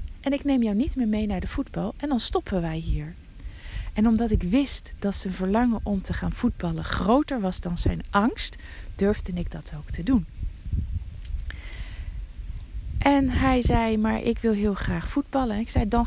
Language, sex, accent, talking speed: Dutch, female, Dutch, 185 wpm